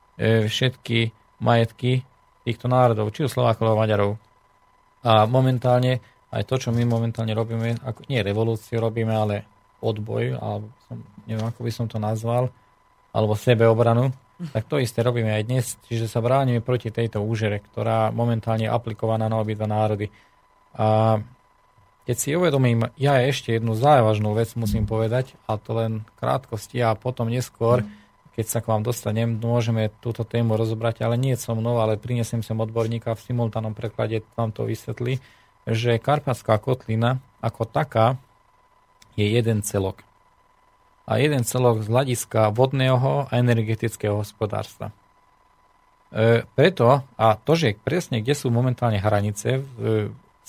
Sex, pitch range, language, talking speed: male, 110-125 Hz, Slovak, 145 wpm